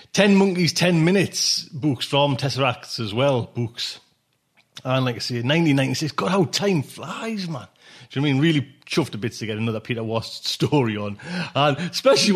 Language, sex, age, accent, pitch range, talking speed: English, male, 30-49, British, 130-180 Hz, 190 wpm